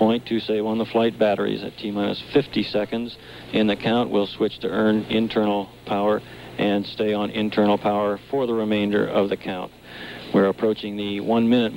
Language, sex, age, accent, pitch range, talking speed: English, male, 60-79, American, 105-115 Hz, 185 wpm